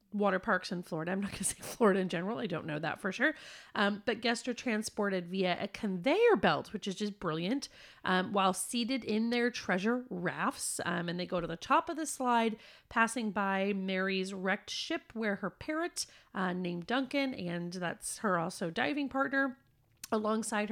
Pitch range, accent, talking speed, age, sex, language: 185-245 Hz, American, 190 wpm, 30-49, female, English